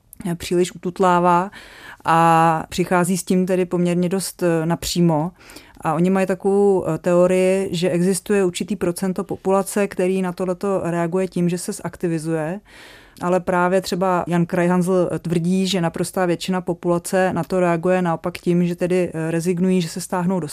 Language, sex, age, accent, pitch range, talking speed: Czech, female, 30-49, native, 170-190 Hz, 145 wpm